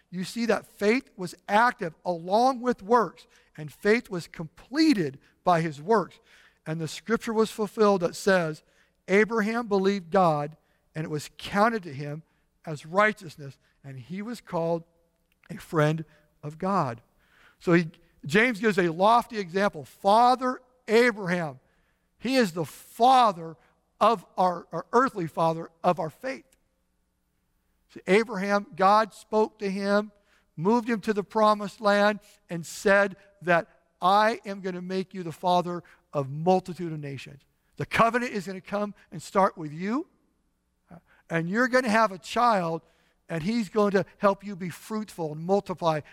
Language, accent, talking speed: English, American, 150 wpm